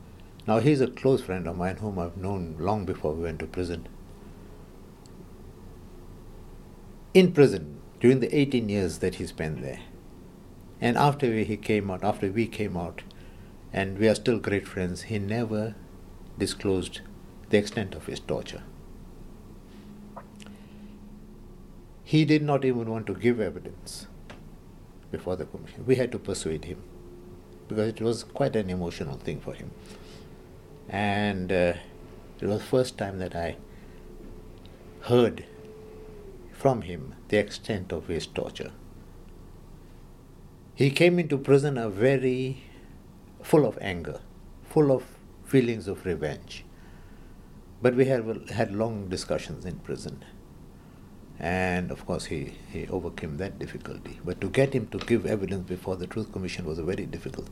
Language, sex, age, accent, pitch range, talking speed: English, male, 60-79, Indian, 90-115 Hz, 145 wpm